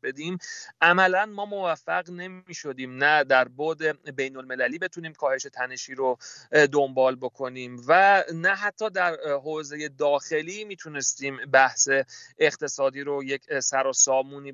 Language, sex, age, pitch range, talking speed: Persian, male, 30-49, 135-175 Hz, 130 wpm